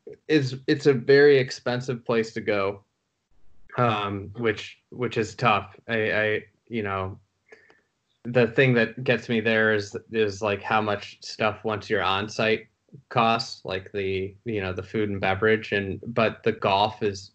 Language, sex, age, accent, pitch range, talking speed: English, male, 20-39, American, 100-115 Hz, 165 wpm